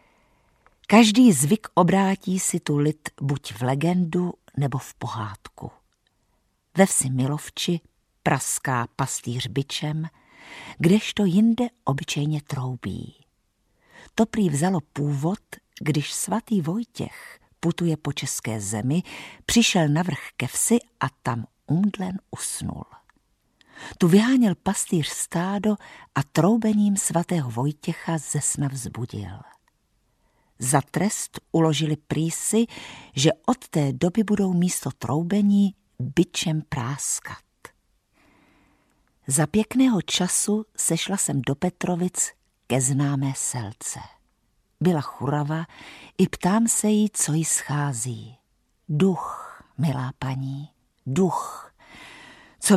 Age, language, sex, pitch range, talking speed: 50-69, Czech, female, 135-195 Hz, 100 wpm